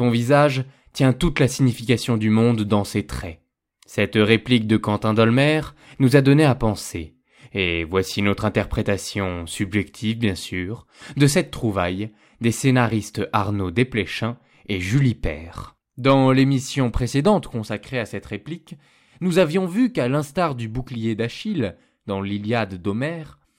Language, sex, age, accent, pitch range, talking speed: French, male, 20-39, French, 110-165 Hz, 140 wpm